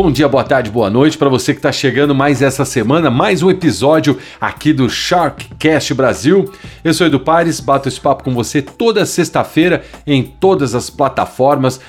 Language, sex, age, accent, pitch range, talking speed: Portuguese, male, 50-69, Brazilian, 125-165 Hz, 180 wpm